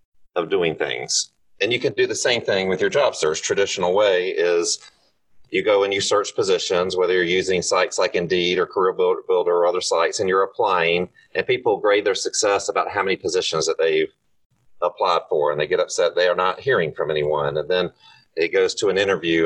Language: English